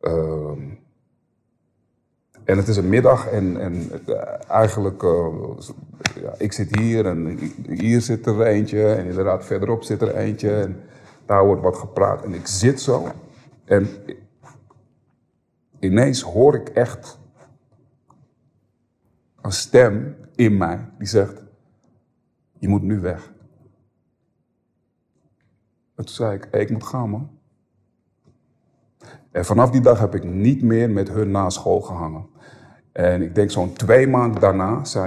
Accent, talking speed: Dutch, 135 wpm